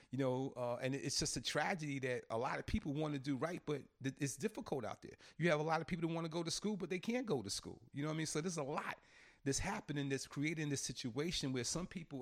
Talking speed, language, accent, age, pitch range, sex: 285 wpm, English, American, 40-59, 130-170 Hz, male